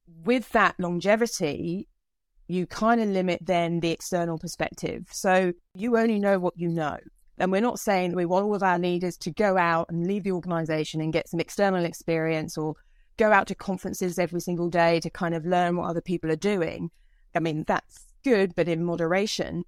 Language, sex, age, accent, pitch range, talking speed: English, female, 30-49, British, 165-190 Hz, 200 wpm